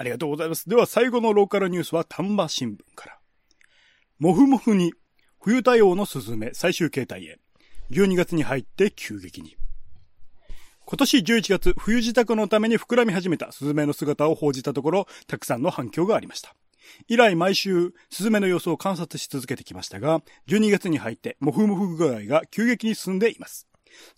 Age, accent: 30-49, native